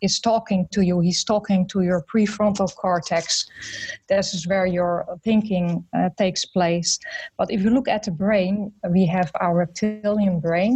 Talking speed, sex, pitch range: 165 wpm, female, 175-210 Hz